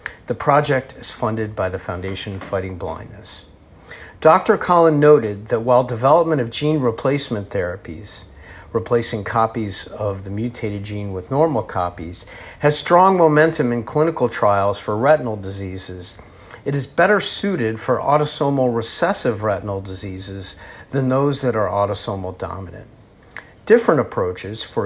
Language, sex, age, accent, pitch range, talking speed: English, male, 50-69, American, 100-140 Hz, 135 wpm